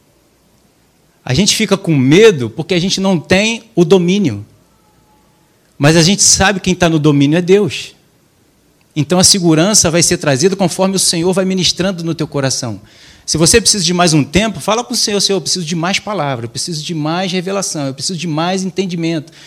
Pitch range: 140-185 Hz